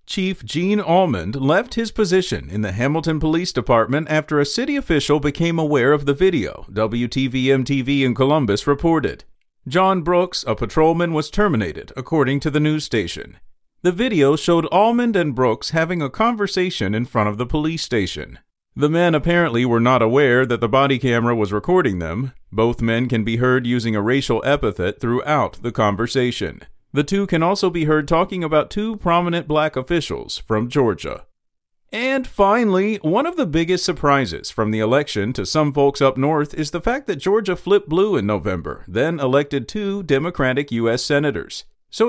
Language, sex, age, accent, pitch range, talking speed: English, male, 40-59, American, 125-175 Hz, 170 wpm